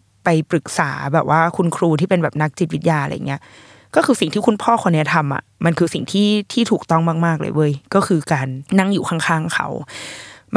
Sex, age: female, 20-39